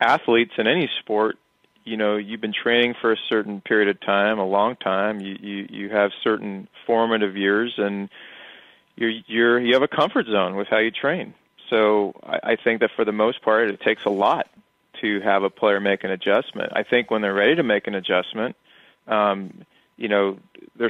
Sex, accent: male, American